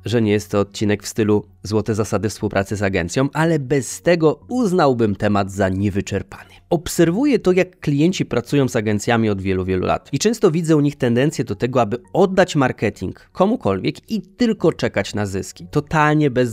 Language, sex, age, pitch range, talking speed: Polish, male, 20-39, 105-135 Hz, 180 wpm